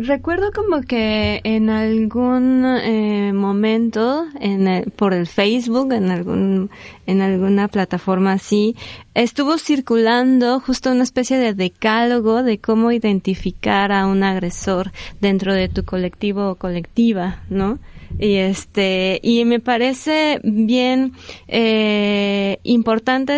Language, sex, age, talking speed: Spanish, female, 20-39, 120 wpm